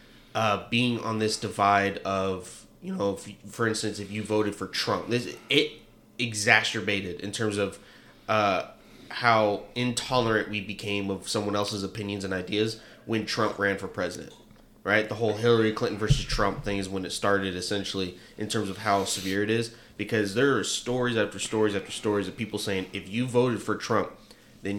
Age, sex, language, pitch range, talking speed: 20-39, male, English, 100-115 Hz, 175 wpm